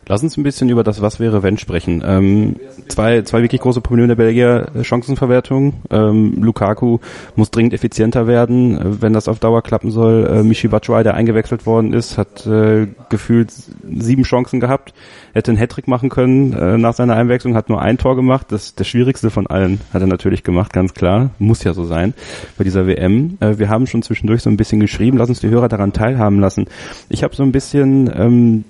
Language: German